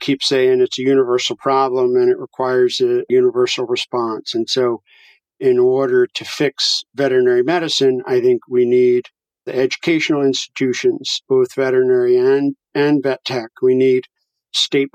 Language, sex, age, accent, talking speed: English, male, 50-69, American, 145 wpm